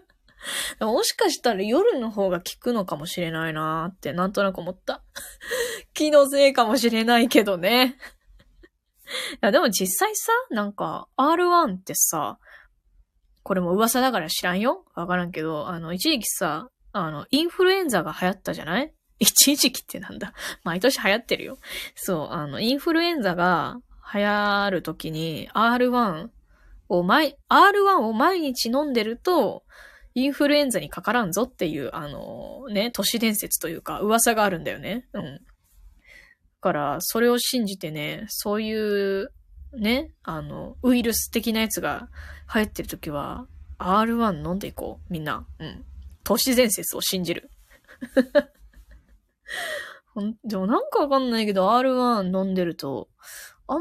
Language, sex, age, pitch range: Japanese, female, 20-39, 185-280 Hz